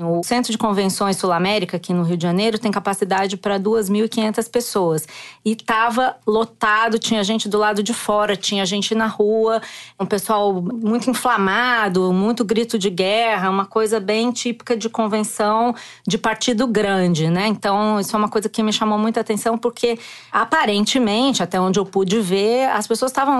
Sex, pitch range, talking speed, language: female, 190-230 Hz, 170 wpm, Portuguese